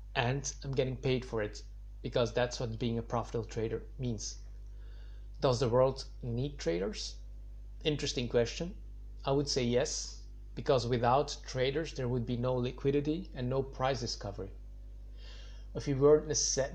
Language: English